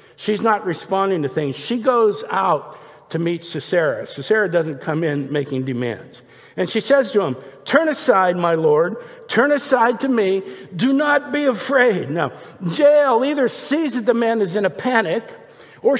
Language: English